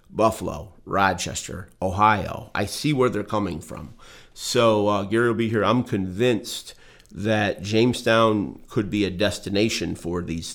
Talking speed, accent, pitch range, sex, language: 140 wpm, American, 95-115 Hz, male, English